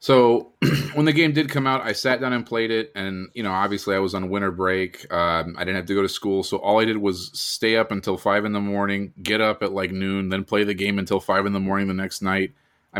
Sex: male